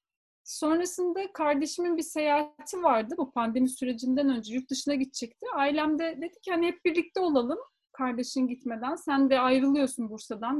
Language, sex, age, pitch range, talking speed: Turkish, female, 30-49, 235-325 Hz, 135 wpm